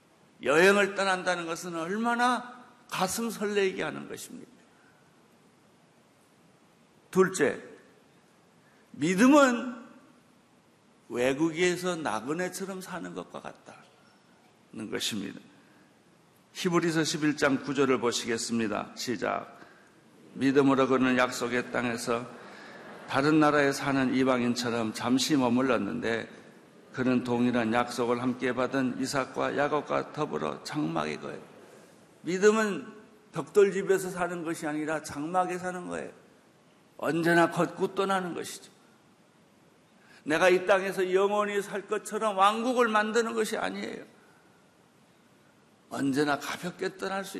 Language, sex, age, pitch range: Korean, male, 50-69, 135-205 Hz